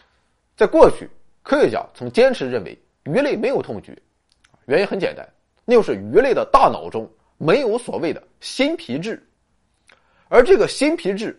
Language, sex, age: Chinese, male, 30-49